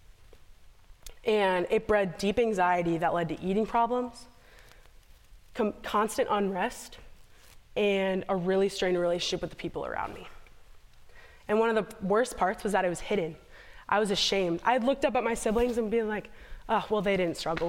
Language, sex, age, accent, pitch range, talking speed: English, female, 20-39, American, 180-225 Hz, 175 wpm